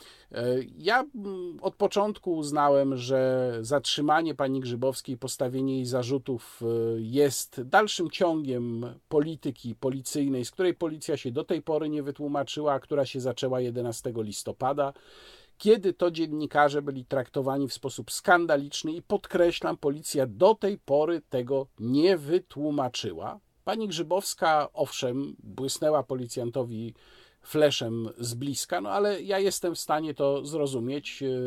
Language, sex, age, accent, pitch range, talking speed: Polish, male, 50-69, native, 125-155 Hz, 120 wpm